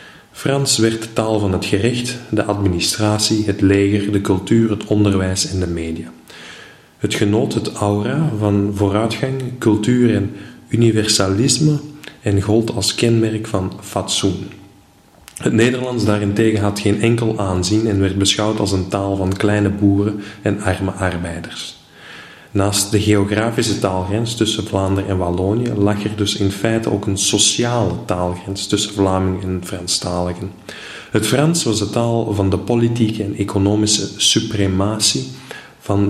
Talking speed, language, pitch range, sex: 140 wpm, Dutch, 100-110 Hz, male